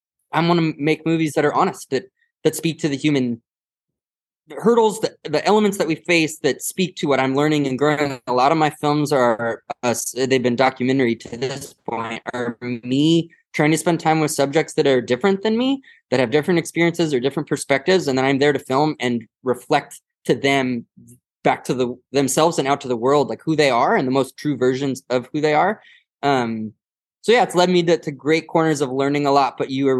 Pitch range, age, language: 125-160 Hz, 20-39, English